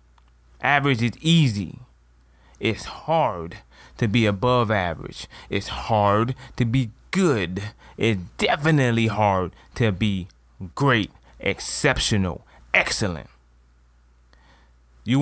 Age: 30-49